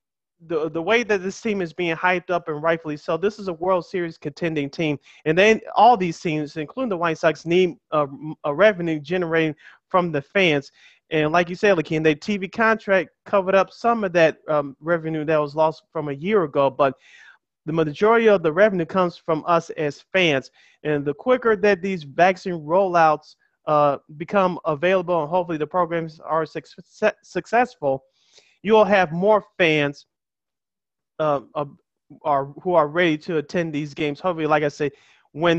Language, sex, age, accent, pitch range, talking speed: English, male, 30-49, American, 150-185 Hz, 180 wpm